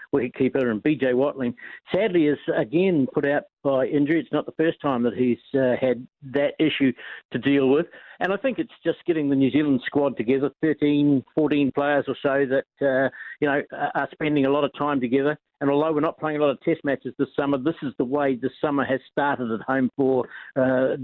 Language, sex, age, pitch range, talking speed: English, male, 60-79, 135-160 Hz, 215 wpm